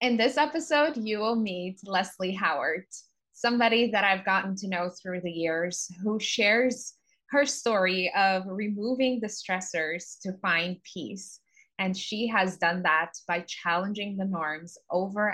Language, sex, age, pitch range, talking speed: English, female, 20-39, 180-240 Hz, 150 wpm